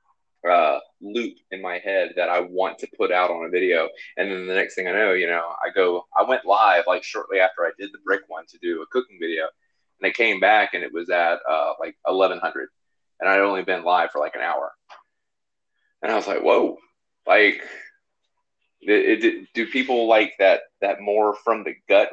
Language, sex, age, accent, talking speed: English, male, 30-49, American, 210 wpm